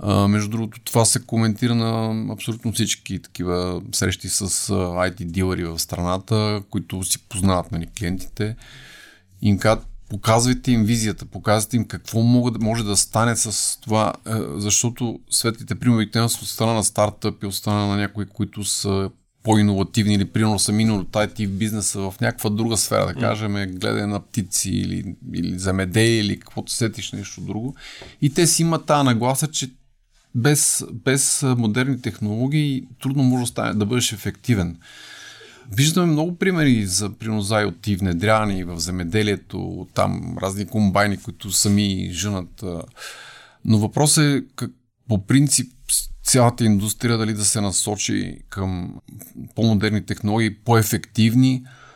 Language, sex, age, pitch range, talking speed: Bulgarian, male, 30-49, 100-120 Hz, 135 wpm